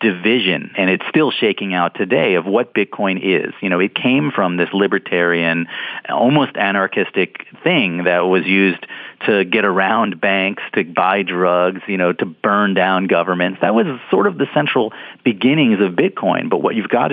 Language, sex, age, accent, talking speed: English, male, 40-59, American, 175 wpm